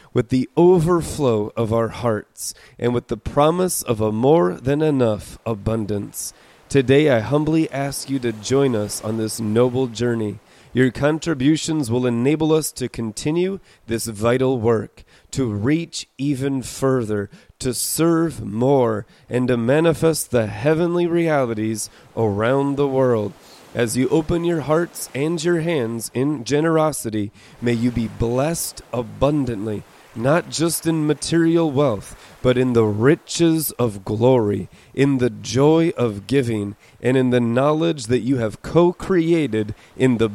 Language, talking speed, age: English, 140 wpm, 30-49